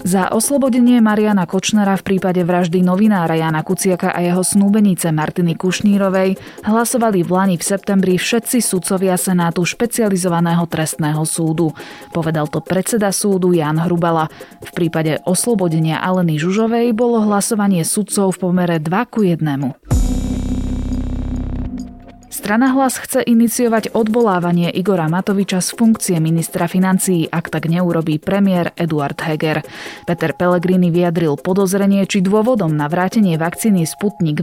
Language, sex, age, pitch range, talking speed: Slovak, female, 20-39, 160-205 Hz, 125 wpm